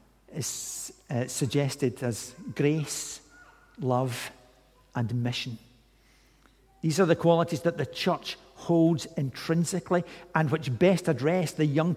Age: 50-69